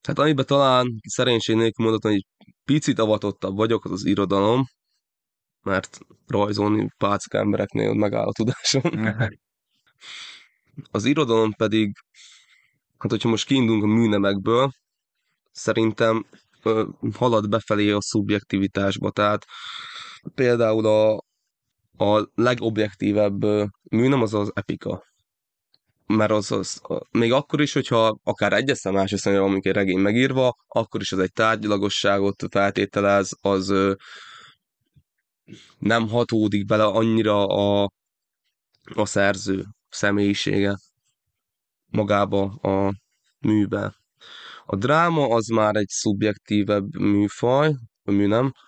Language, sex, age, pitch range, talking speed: Hungarian, male, 20-39, 100-115 Hz, 110 wpm